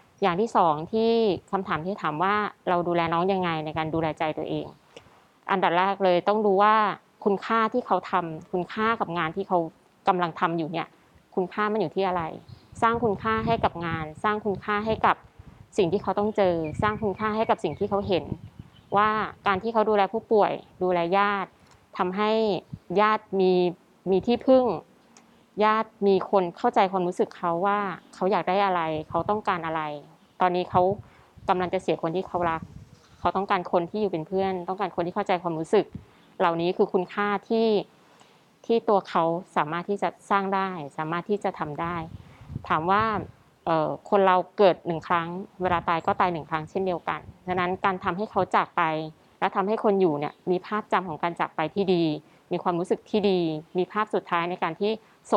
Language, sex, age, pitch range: English, female, 20-39, 170-205 Hz